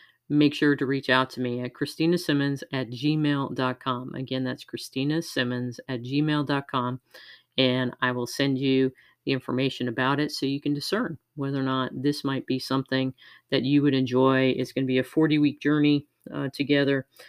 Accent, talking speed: American, 170 wpm